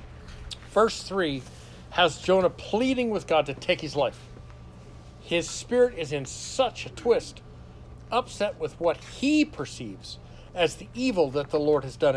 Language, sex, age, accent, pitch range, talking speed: English, male, 60-79, American, 125-195 Hz, 155 wpm